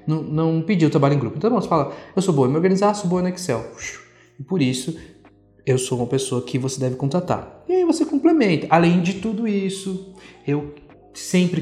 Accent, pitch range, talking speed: Brazilian, 130-180 Hz, 205 wpm